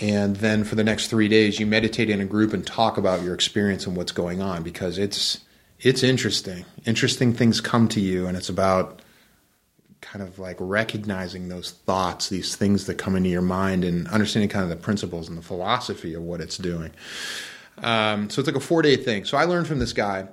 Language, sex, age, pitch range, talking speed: English, male, 30-49, 100-150 Hz, 215 wpm